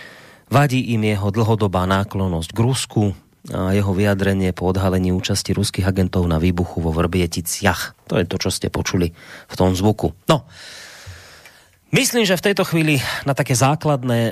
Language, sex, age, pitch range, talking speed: Slovak, male, 30-49, 105-130 Hz, 150 wpm